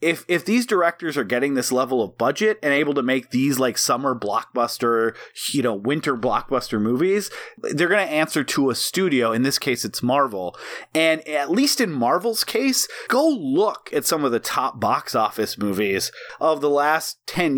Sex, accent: male, American